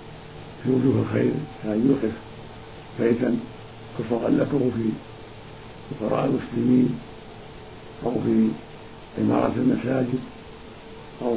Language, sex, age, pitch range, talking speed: Arabic, male, 50-69, 110-140 Hz, 80 wpm